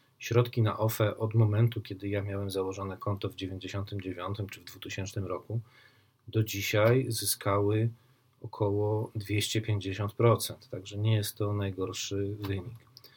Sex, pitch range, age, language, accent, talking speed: male, 105-125 Hz, 40-59, Polish, native, 125 wpm